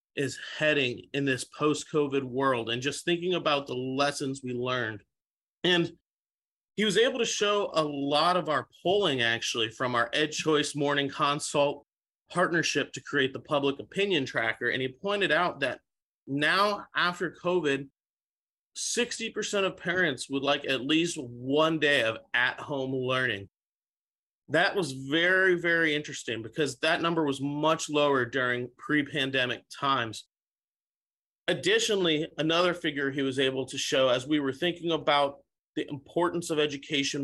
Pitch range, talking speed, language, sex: 135-165 Hz, 145 wpm, English, male